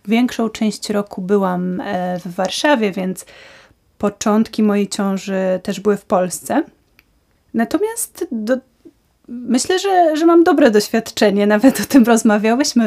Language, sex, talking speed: Polish, female, 115 wpm